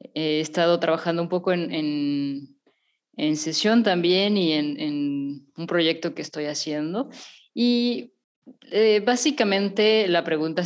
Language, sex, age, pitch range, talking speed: Spanish, female, 20-39, 150-200 Hz, 130 wpm